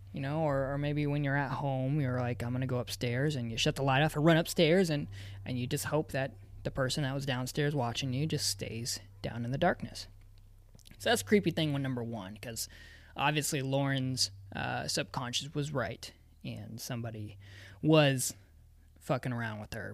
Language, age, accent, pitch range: English, 20-39, American, 115-155 Hz